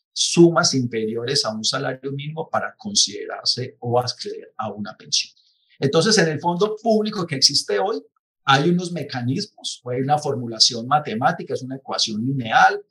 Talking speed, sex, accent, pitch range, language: 150 wpm, male, Colombian, 130-175 Hz, Spanish